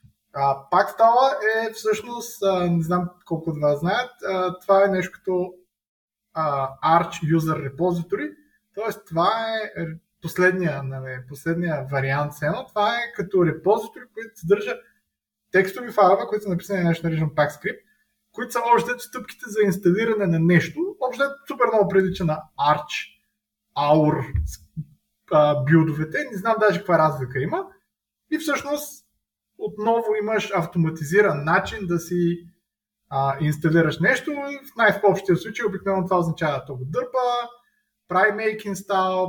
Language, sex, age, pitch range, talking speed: Bulgarian, male, 20-39, 160-230 Hz, 135 wpm